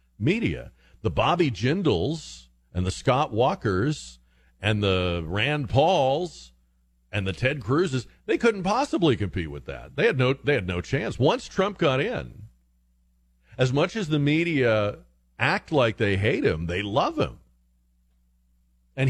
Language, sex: English, male